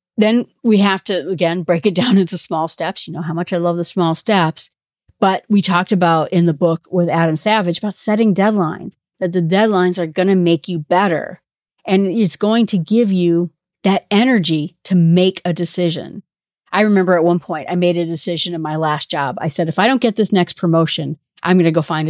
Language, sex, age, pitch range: English, female, 40-59, 170-205 Hz